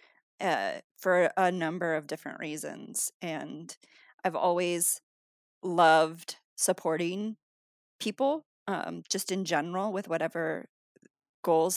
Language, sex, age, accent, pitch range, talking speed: English, female, 30-49, American, 165-190 Hz, 100 wpm